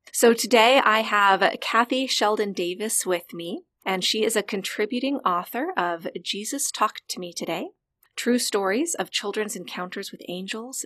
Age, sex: 30-49, female